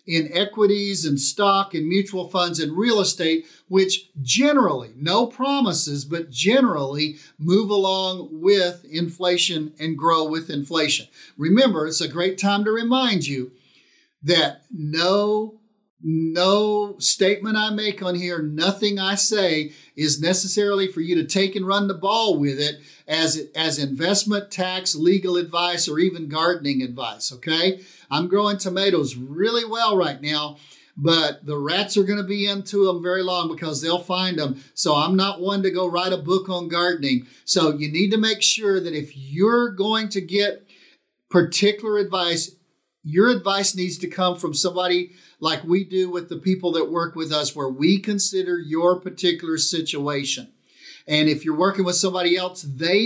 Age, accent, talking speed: 50-69, American, 165 wpm